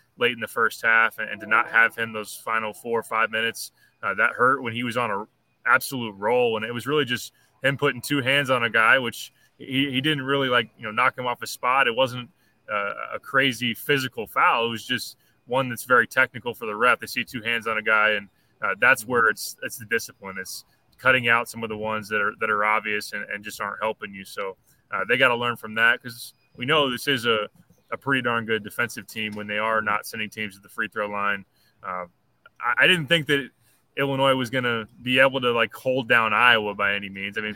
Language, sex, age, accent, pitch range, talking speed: English, male, 20-39, American, 110-125 Hz, 245 wpm